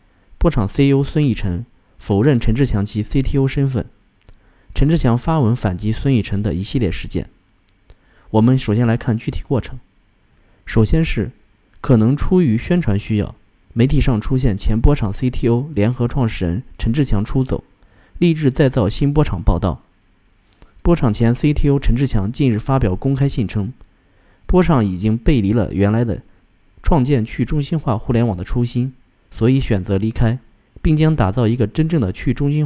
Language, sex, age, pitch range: Chinese, male, 20-39, 100-135 Hz